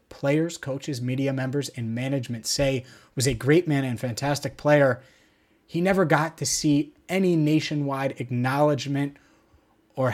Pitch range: 125-155 Hz